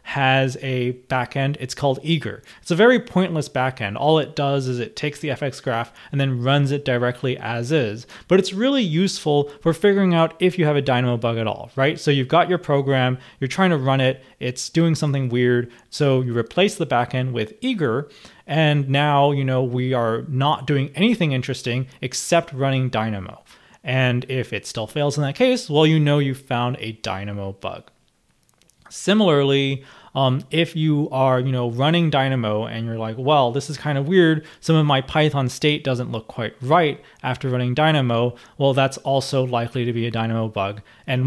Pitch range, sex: 120-150 Hz, male